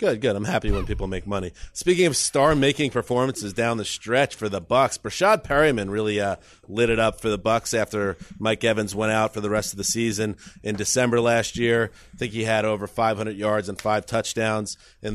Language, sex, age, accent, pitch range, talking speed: English, male, 40-59, American, 105-125 Hz, 215 wpm